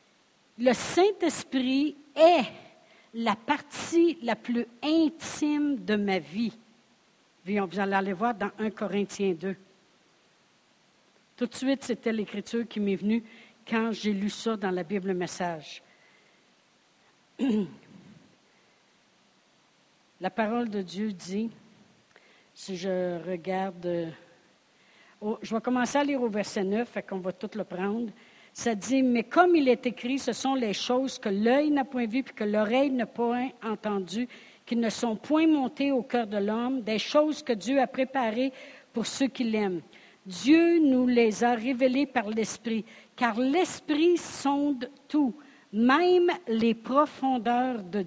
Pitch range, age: 205-270 Hz, 60-79